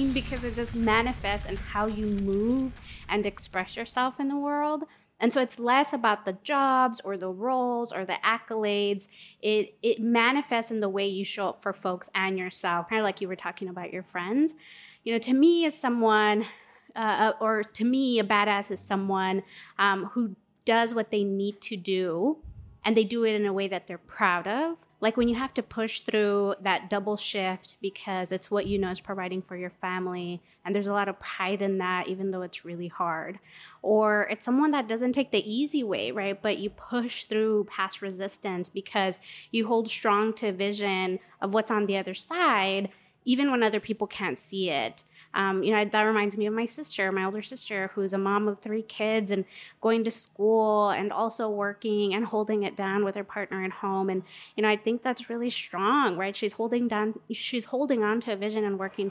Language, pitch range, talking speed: English, 190-225 Hz, 205 wpm